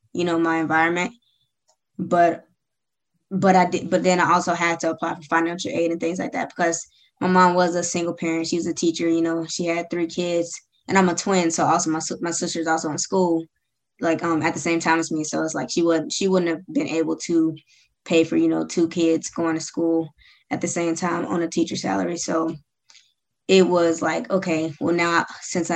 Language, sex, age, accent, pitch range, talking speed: English, female, 10-29, American, 160-175 Hz, 220 wpm